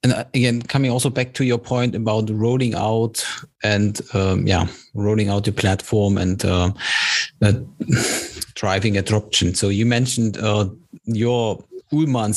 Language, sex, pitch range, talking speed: English, male, 105-125 Hz, 135 wpm